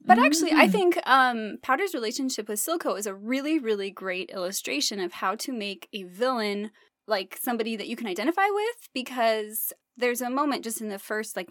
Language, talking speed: English, 195 wpm